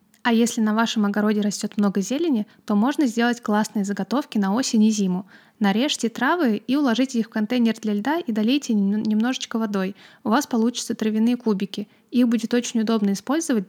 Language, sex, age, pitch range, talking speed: Russian, female, 20-39, 205-235 Hz, 175 wpm